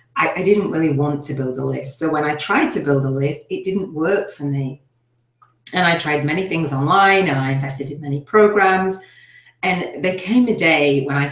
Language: English